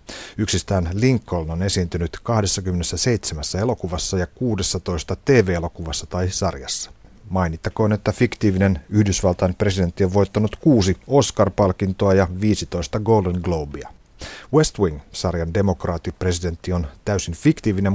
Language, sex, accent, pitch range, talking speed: Finnish, male, native, 85-105 Hz, 100 wpm